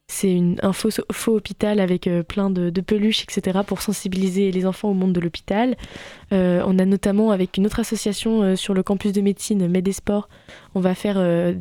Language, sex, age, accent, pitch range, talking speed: French, female, 20-39, French, 175-200 Hz, 205 wpm